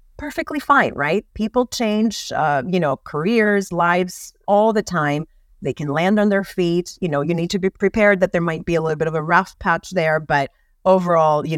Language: English